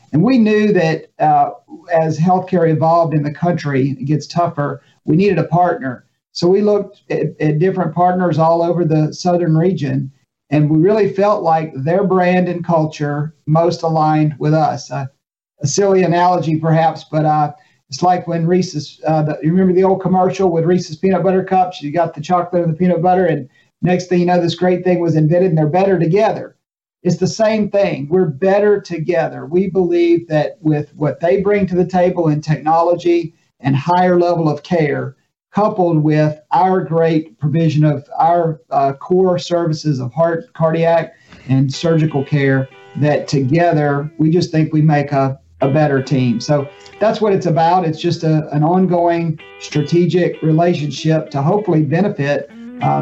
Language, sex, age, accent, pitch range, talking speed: English, male, 50-69, American, 150-180 Hz, 175 wpm